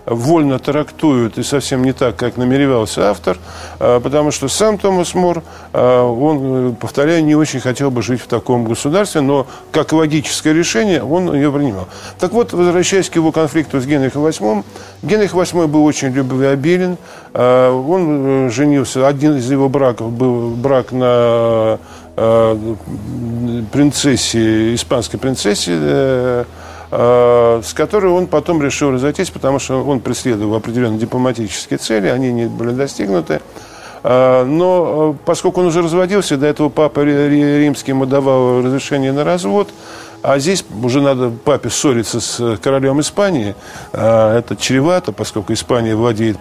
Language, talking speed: Russian, 130 wpm